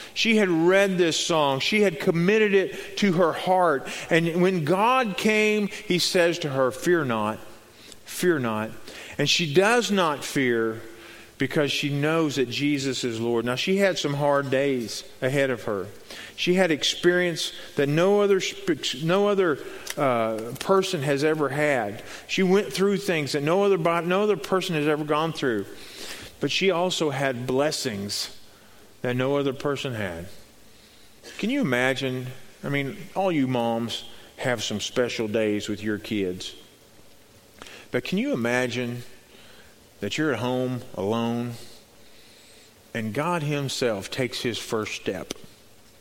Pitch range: 120-185 Hz